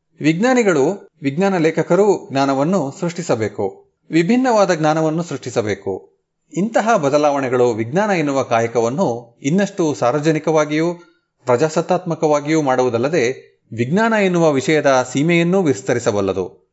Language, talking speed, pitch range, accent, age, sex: Kannada, 80 wpm, 130-190 Hz, native, 30-49, male